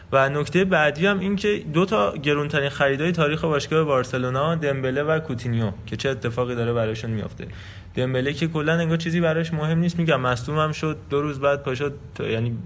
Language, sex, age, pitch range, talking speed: Persian, male, 20-39, 125-155 Hz, 185 wpm